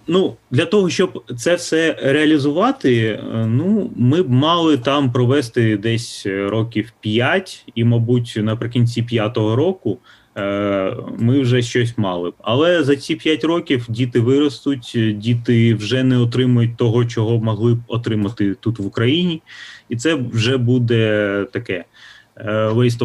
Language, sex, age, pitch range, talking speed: Ukrainian, male, 30-49, 110-130 Hz, 130 wpm